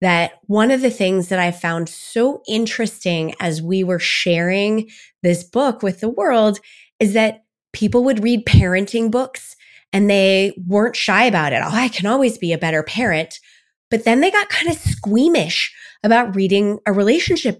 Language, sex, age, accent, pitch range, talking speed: English, female, 20-39, American, 175-225 Hz, 175 wpm